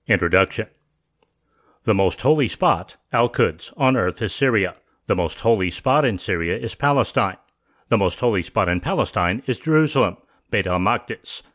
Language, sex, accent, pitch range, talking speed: English, male, American, 95-125 Hz, 145 wpm